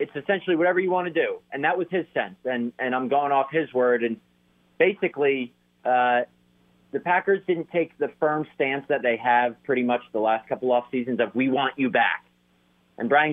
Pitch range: 115-145 Hz